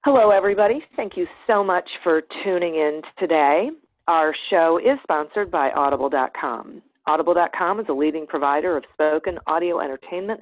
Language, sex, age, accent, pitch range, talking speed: English, female, 40-59, American, 150-205 Hz, 145 wpm